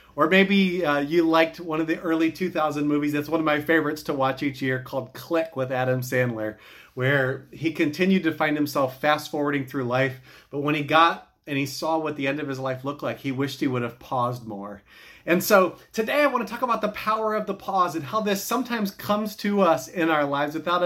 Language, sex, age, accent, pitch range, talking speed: English, male, 30-49, American, 135-190 Hz, 230 wpm